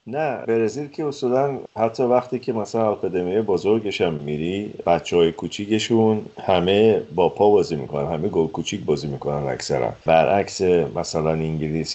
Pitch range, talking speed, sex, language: 80-110 Hz, 140 wpm, male, Persian